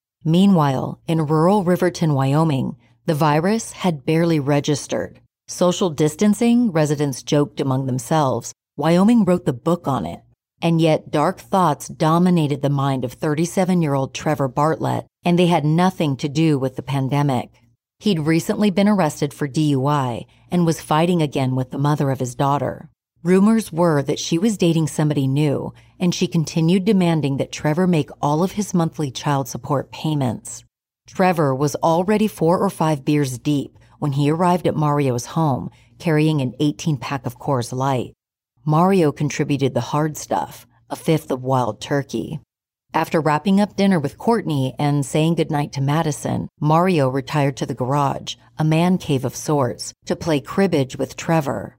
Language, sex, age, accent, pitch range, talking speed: English, female, 40-59, American, 135-170 Hz, 160 wpm